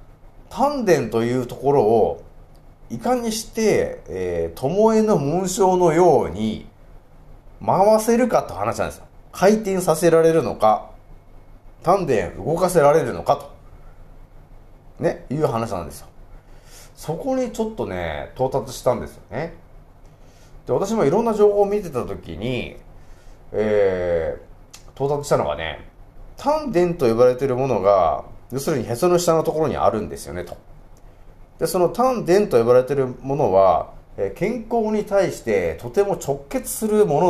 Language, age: Japanese, 30-49